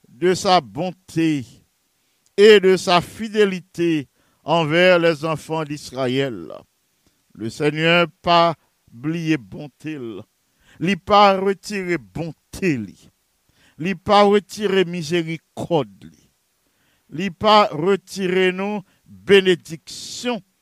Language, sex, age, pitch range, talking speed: English, male, 50-69, 145-190 Hz, 90 wpm